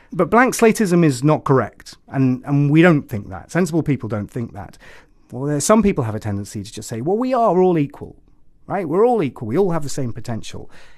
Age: 30-49